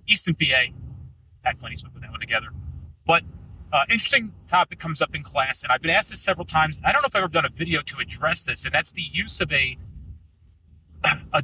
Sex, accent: male, American